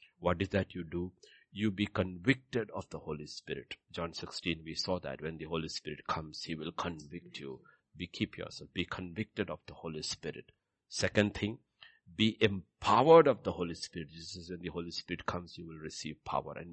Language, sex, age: English, male, 60-79